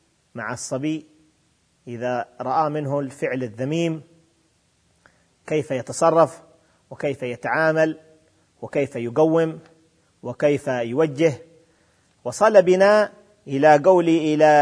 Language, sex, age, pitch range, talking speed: Arabic, male, 40-59, 135-175 Hz, 80 wpm